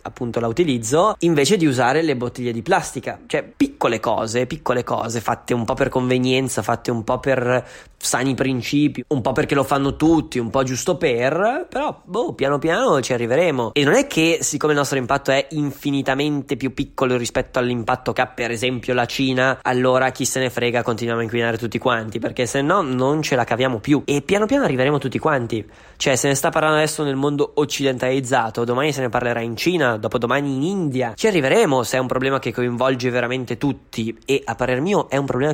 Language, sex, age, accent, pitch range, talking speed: Italian, male, 20-39, native, 125-145 Hz, 205 wpm